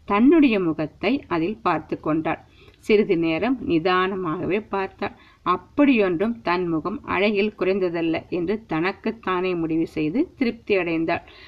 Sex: female